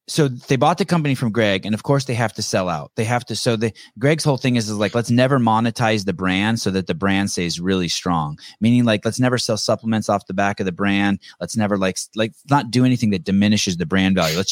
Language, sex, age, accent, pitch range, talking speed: English, male, 30-49, American, 110-150 Hz, 260 wpm